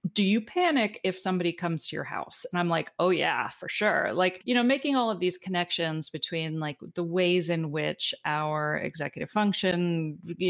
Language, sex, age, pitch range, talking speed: English, female, 30-49, 170-225 Hz, 195 wpm